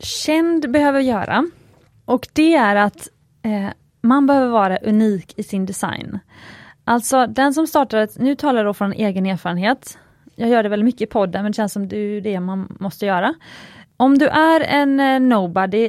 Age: 20-39